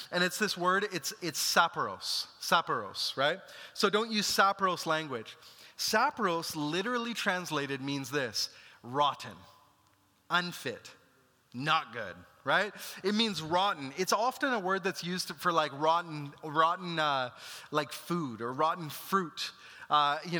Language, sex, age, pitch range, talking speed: English, male, 30-49, 160-210 Hz, 130 wpm